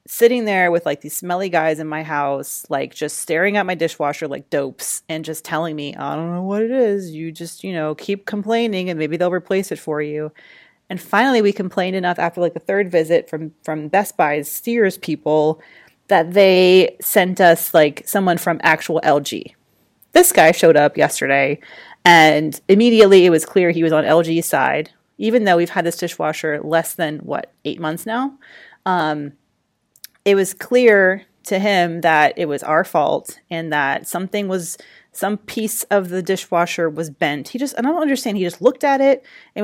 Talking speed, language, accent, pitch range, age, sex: 195 wpm, English, American, 155-200 Hz, 30-49, female